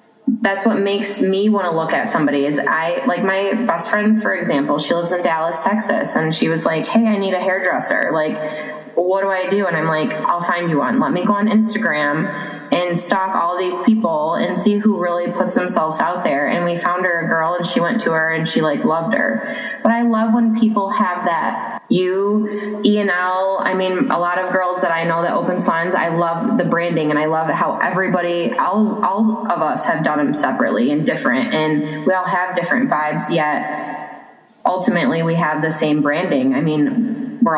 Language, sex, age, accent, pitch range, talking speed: English, female, 20-39, American, 165-215 Hz, 215 wpm